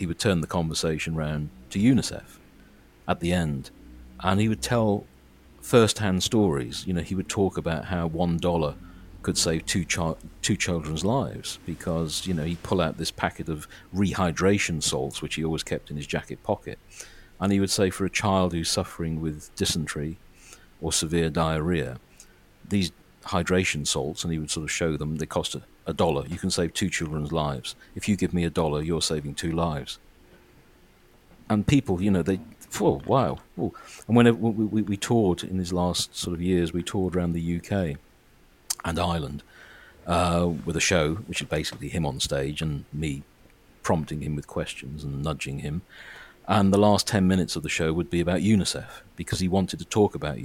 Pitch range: 80-95 Hz